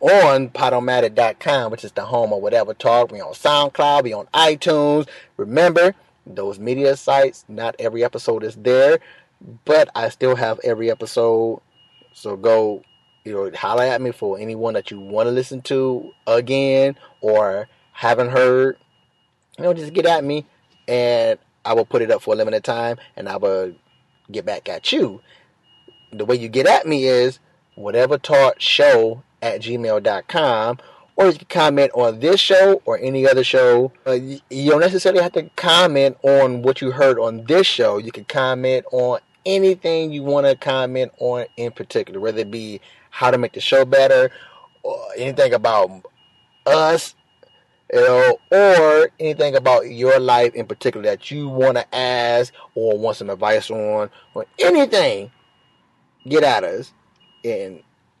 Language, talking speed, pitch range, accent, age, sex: English, 160 wpm, 120-175 Hz, American, 30-49, male